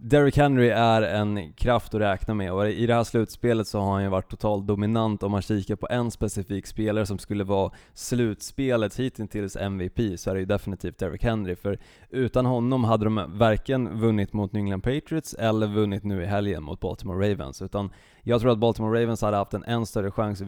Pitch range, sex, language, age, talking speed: 100-115 Hz, male, Swedish, 20-39, 210 wpm